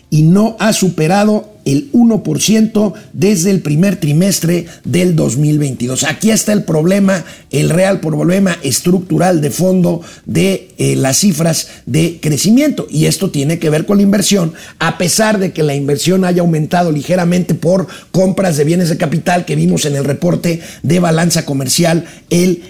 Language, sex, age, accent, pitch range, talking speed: Spanish, male, 50-69, Mexican, 160-210 Hz, 160 wpm